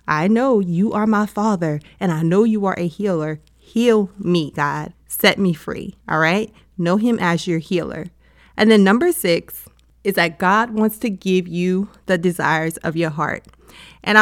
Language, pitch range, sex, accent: English, 170-210 Hz, female, American